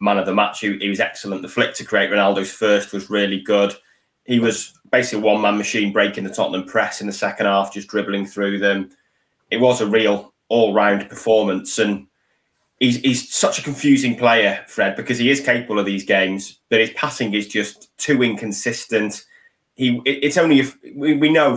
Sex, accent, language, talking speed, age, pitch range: male, British, English, 190 wpm, 20-39, 100-120 Hz